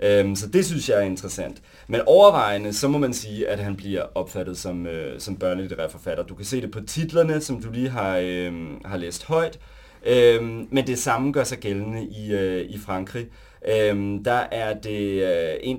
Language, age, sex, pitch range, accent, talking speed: Danish, 30-49, male, 95-125 Hz, native, 190 wpm